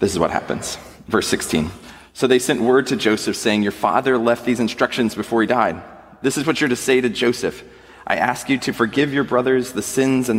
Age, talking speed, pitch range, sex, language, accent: 30-49, 225 wpm, 105-140 Hz, male, English, American